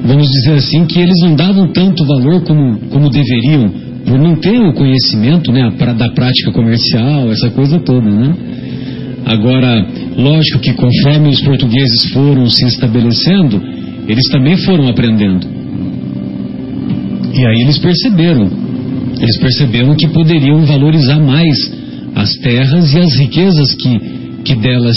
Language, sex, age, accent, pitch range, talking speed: Portuguese, male, 50-69, Brazilian, 115-145 Hz, 135 wpm